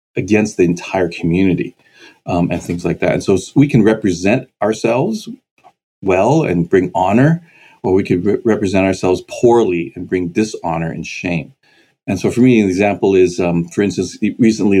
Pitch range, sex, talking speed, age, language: 90-110 Hz, male, 170 wpm, 40-59, English